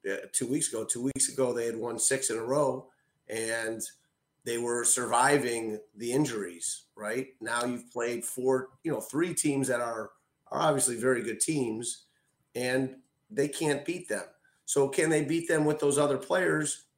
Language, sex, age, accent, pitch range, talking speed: English, male, 30-49, American, 130-150 Hz, 175 wpm